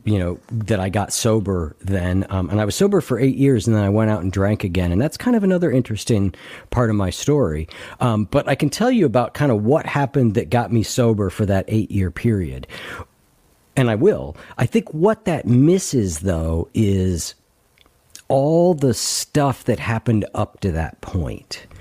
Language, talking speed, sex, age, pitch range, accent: English, 200 wpm, male, 50-69, 95-135 Hz, American